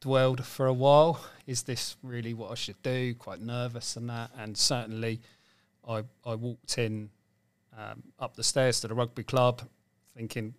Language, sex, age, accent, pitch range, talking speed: English, male, 40-59, British, 110-130 Hz, 170 wpm